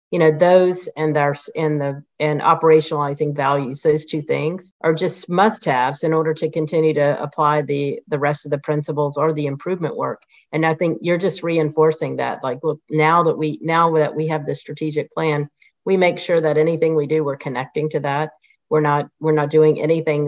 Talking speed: 200 wpm